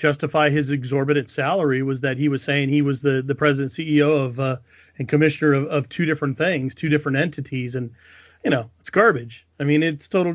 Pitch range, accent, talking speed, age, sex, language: 135-150 Hz, American, 210 wpm, 30-49, male, English